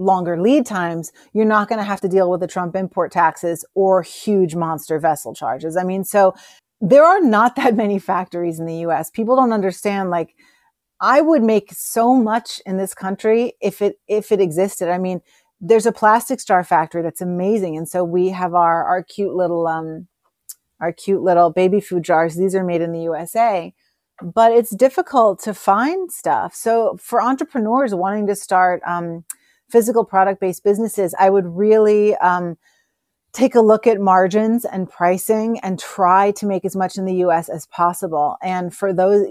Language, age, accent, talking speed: English, 30-49, American, 185 wpm